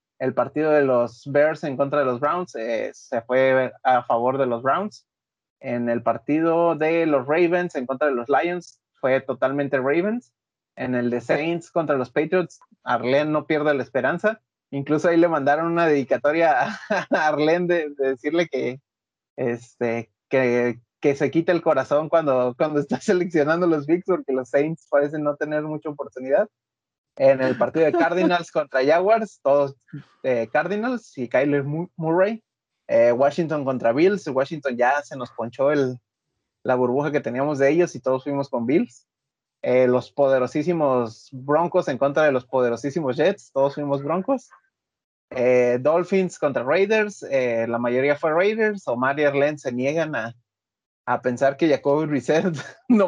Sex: male